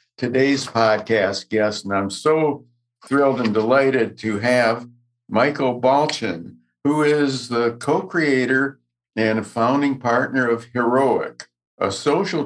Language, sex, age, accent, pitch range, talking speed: English, male, 60-79, American, 110-135 Hz, 120 wpm